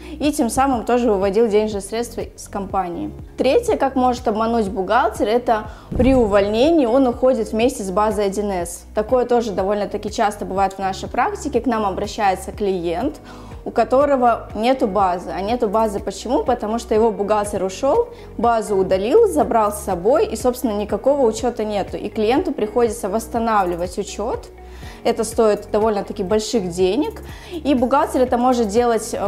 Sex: female